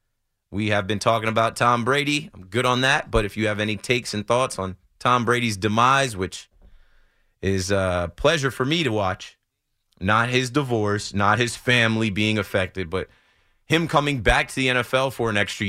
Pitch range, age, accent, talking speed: 100-125 Hz, 30-49, American, 185 wpm